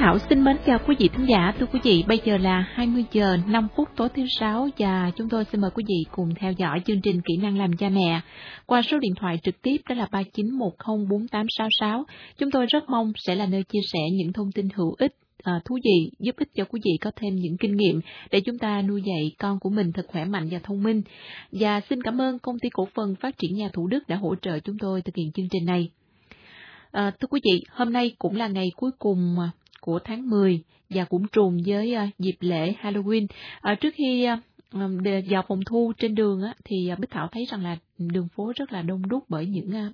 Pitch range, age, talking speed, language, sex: 185-225 Hz, 20-39, 230 wpm, Vietnamese, female